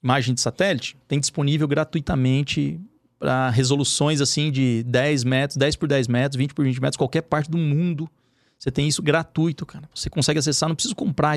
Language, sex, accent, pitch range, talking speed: Portuguese, male, Brazilian, 135-165 Hz, 185 wpm